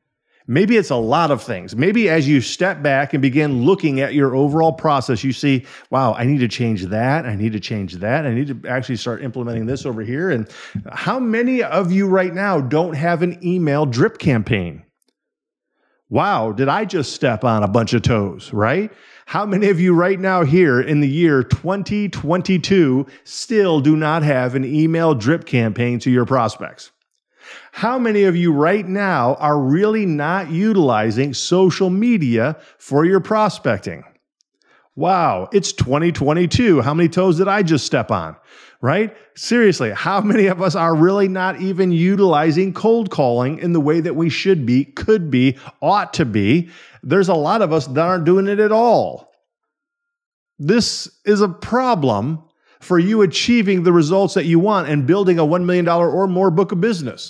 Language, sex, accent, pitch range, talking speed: English, male, American, 135-195 Hz, 180 wpm